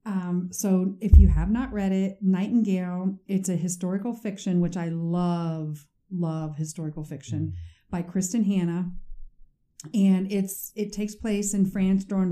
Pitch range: 175-200 Hz